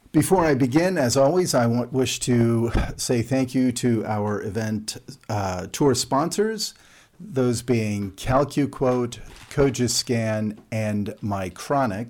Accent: American